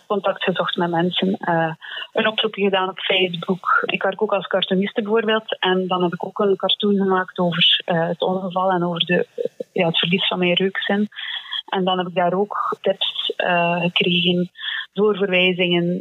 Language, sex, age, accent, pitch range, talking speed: Dutch, female, 20-39, Dutch, 180-200 Hz, 165 wpm